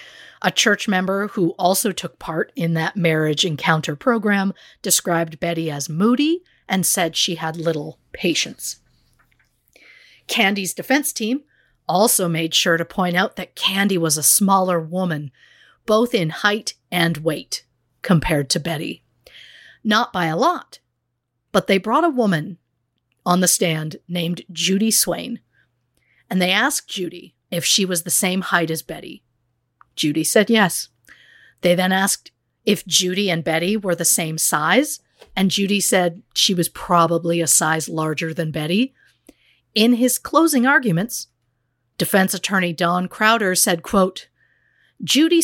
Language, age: English, 40-59